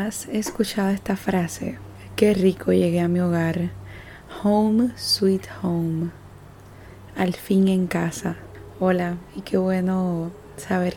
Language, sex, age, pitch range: Spanish, female, 20-39, 165-200 Hz